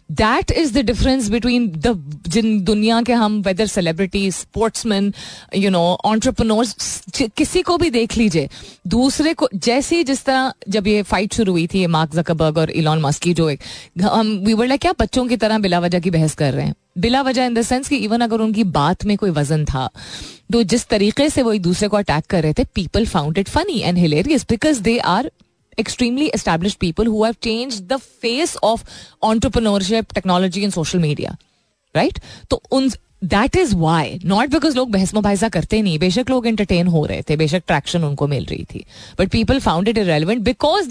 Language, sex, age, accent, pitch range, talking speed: Hindi, female, 30-49, native, 165-230 Hz, 185 wpm